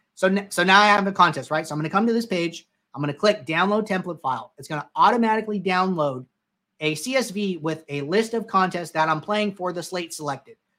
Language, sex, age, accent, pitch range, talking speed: English, male, 30-49, American, 155-200 Hz, 235 wpm